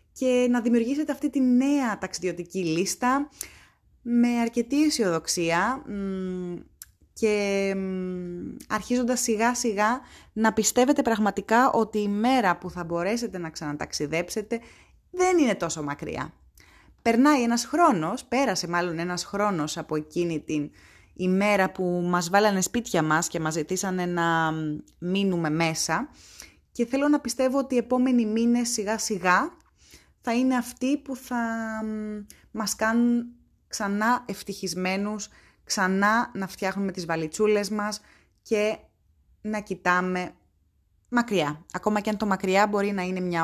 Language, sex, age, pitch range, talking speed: Greek, female, 20-39, 175-235 Hz, 120 wpm